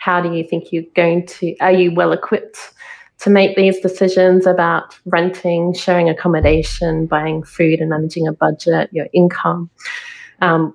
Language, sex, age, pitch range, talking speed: English, female, 30-49, 165-195 Hz, 155 wpm